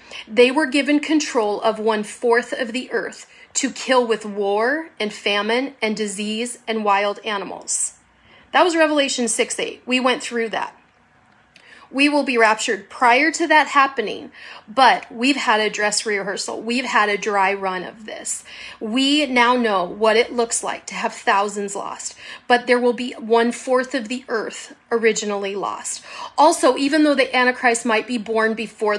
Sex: female